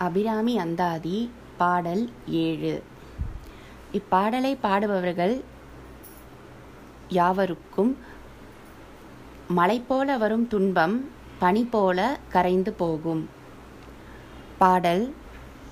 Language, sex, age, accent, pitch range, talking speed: Tamil, female, 20-39, native, 175-220 Hz, 55 wpm